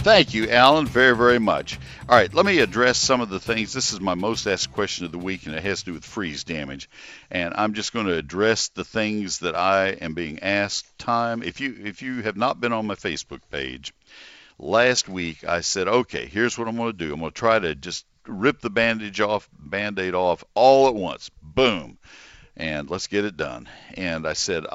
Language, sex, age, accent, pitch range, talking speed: English, male, 60-79, American, 80-115 Hz, 220 wpm